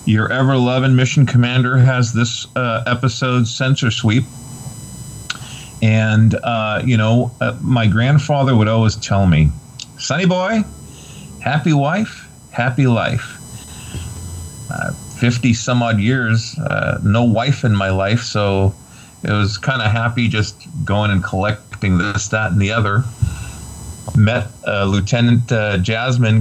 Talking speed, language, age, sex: 130 wpm, English, 40-59, male